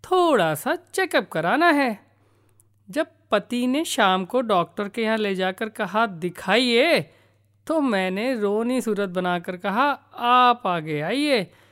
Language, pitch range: Hindi, 180-270 Hz